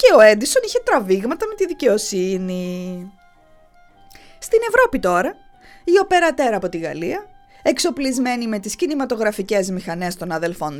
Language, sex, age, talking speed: English, female, 20-39, 130 wpm